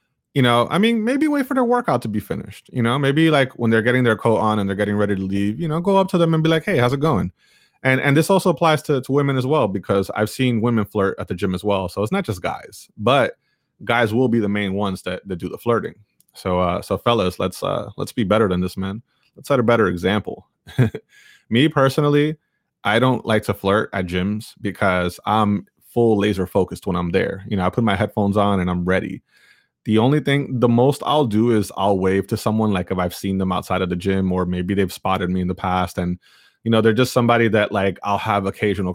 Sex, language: male, English